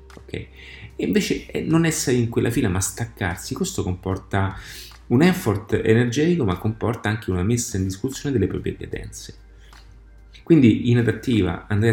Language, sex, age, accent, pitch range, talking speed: Italian, male, 30-49, native, 95-115 Hz, 150 wpm